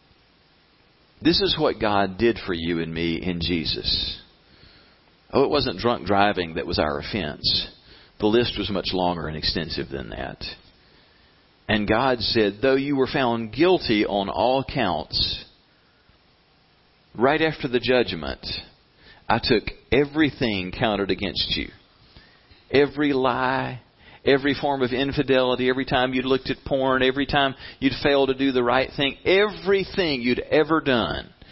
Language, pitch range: English, 90-135 Hz